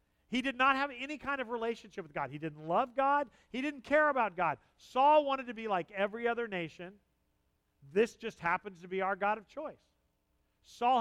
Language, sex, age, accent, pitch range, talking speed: English, male, 50-69, American, 175-250 Hz, 200 wpm